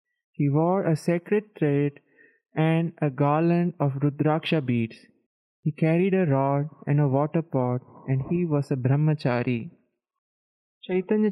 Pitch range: 145-185 Hz